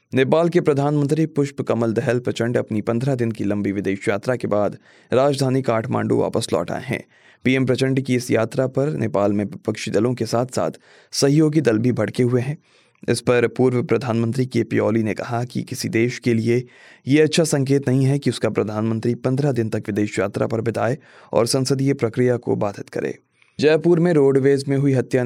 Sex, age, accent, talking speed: male, 20-39, native, 195 wpm